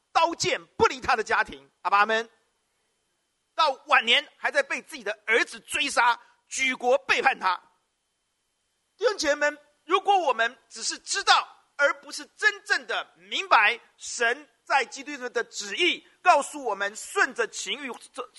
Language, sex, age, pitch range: Chinese, male, 50-69, 230-335 Hz